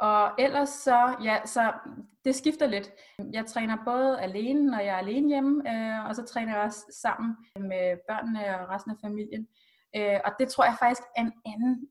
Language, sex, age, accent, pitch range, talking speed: Danish, female, 20-39, native, 225-275 Hz, 185 wpm